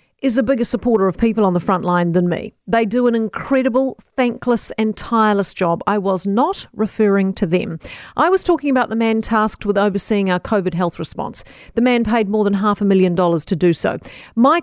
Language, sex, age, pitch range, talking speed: English, female, 40-59, 200-255 Hz, 215 wpm